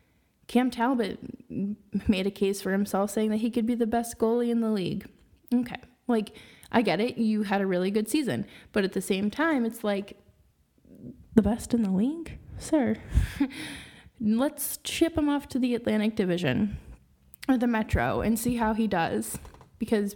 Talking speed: 175 wpm